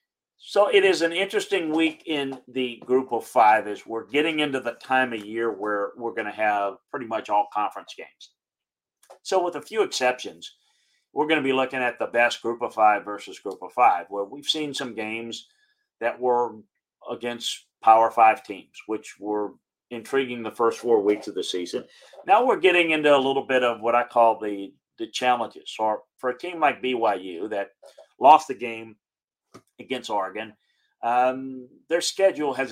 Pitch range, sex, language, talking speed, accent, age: 110-150 Hz, male, English, 185 wpm, American, 40-59